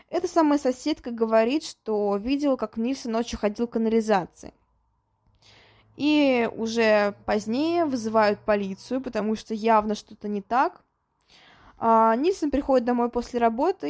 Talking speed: 120 wpm